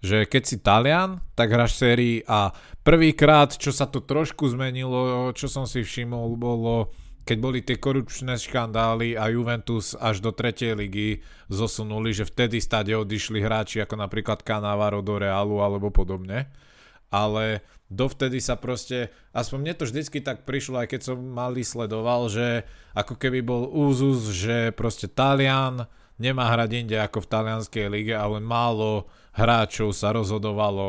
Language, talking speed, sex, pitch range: Slovak, 150 wpm, male, 105-120 Hz